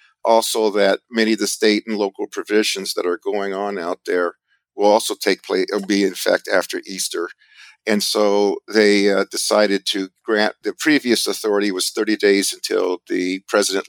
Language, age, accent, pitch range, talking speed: English, 50-69, American, 100-135 Hz, 175 wpm